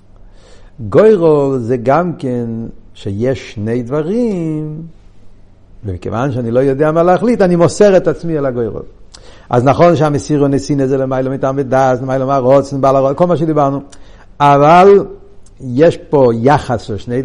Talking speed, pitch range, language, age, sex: 115 wpm, 125-205 Hz, Hebrew, 60-79, male